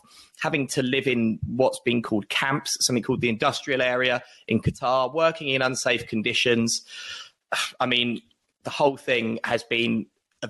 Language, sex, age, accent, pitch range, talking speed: English, male, 20-39, British, 115-135 Hz, 155 wpm